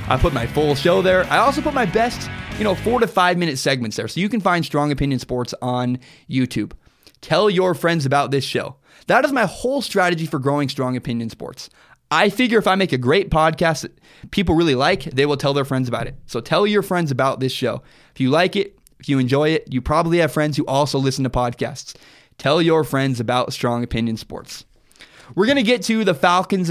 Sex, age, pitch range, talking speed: male, 20-39, 130-180 Hz, 225 wpm